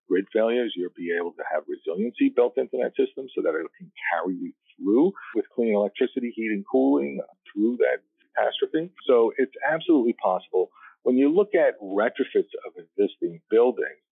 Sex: male